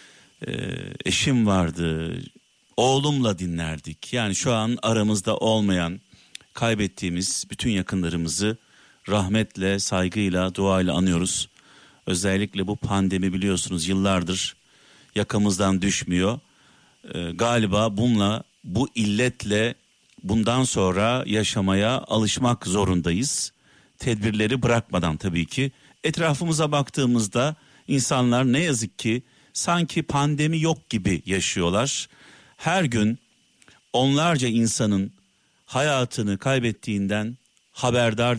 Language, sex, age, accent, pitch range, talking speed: Turkish, male, 50-69, native, 100-135 Hz, 90 wpm